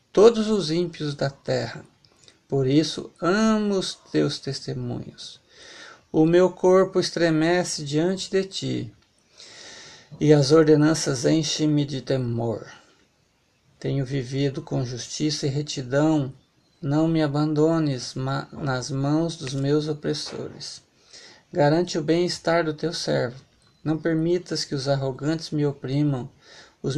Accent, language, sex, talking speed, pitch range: Brazilian, Portuguese, male, 115 wpm, 135-170 Hz